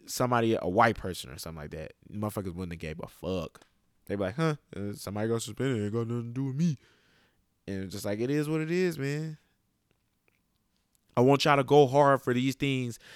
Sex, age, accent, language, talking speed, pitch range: male, 20-39, American, English, 215 wpm, 95-125 Hz